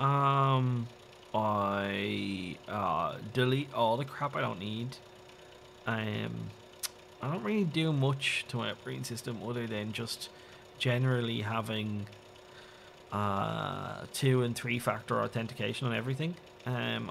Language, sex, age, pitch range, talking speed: English, male, 20-39, 110-125 Hz, 120 wpm